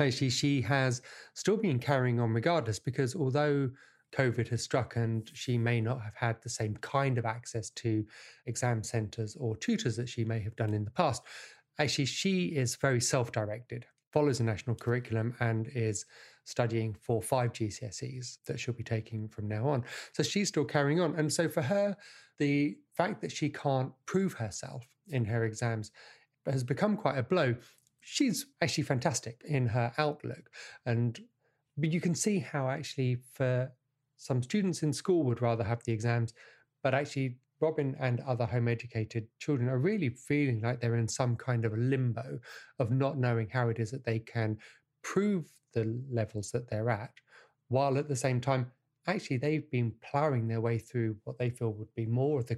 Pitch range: 115-140 Hz